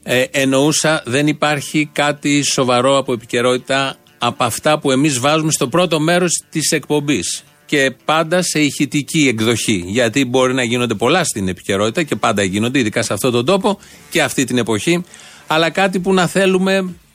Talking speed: 165 wpm